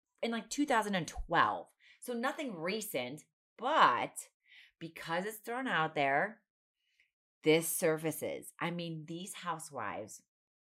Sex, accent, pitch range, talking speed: female, American, 150-195 Hz, 100 wpm